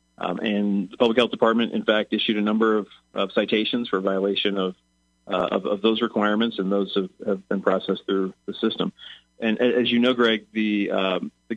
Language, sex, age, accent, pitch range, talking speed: English, male, 40-59, American, 95-110 Hz, 200 wpm